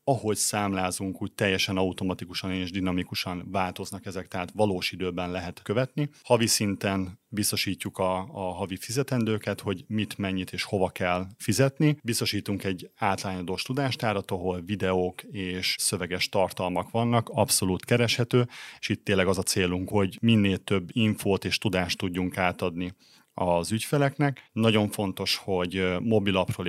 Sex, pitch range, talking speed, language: male, 95-110 Hz, 135 wpm, Hungarian